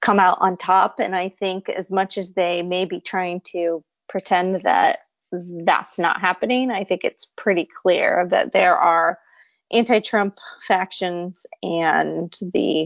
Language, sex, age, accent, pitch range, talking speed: English, female, 30-49, American, 180-210 Hz, 150 wpm